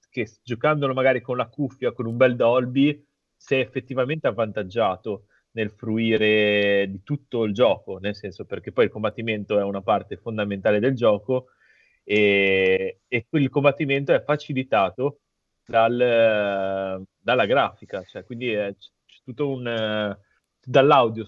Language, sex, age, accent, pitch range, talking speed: Italian, male, 30-49, native, 100-130 Hz, 130 wpm